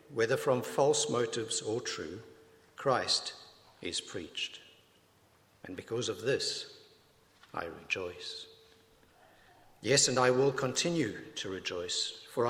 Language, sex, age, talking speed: English, male, 60-79, 110 wpm